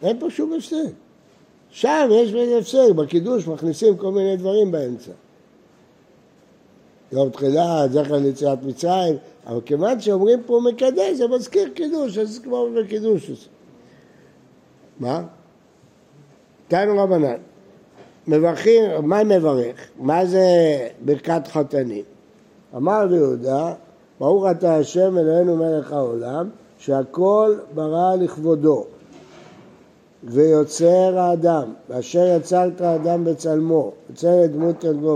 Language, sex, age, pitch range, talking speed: Hebrew, male, 60-79, 150-180 Hz, 105 wpm